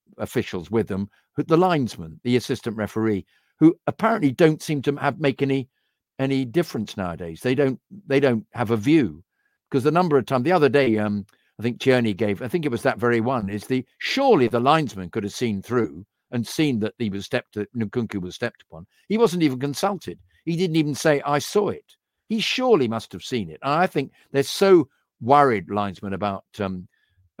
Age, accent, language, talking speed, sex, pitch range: 50-69, British, English, 200 wpm, male, 100-140 Hz